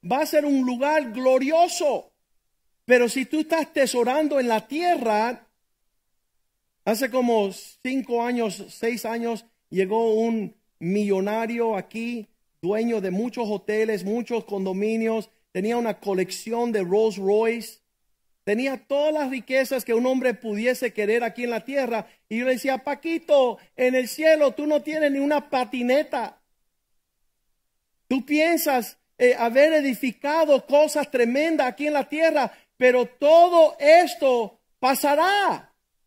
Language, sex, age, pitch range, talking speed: Spanish, male, 50-69, 230-300 Hz, 130 wpm